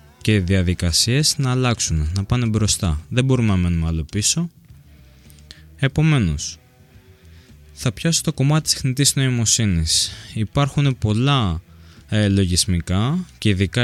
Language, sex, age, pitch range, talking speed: Greek, male, 20-39, 85-115 Hz, 115 wpm